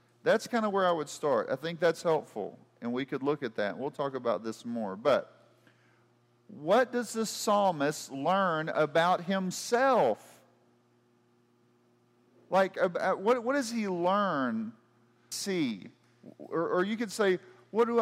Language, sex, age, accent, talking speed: English, male, 40-59, American, 140 wpm